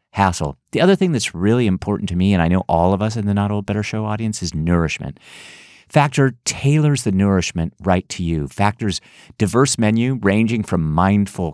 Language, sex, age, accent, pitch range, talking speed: English, male, 50-69, American, 90-115 Hz, 190 wpm